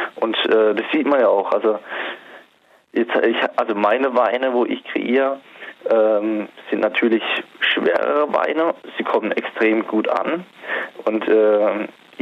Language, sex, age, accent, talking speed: German, male, 20-39, German, 135 wpm